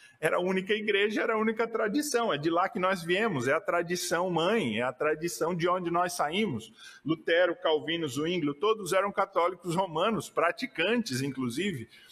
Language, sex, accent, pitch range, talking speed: Portuguese, male, Brazilian, 155-200 Hz, 170 wpm